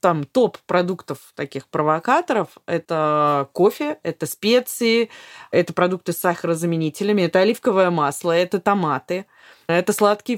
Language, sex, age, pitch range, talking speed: Russian, female, 20-39, 165-210 Hz, 110 wpm